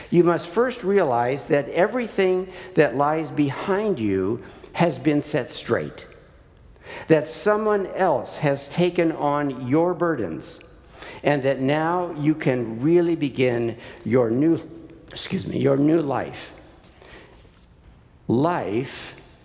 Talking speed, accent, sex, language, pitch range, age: 115 wpm, American, male, English, 135-180 Hz, 60-79